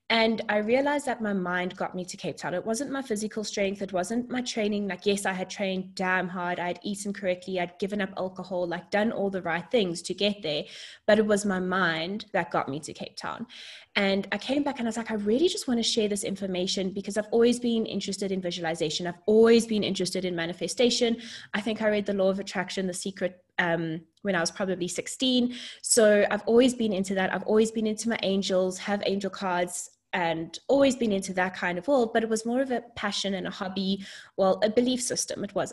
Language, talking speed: English, 230 wpm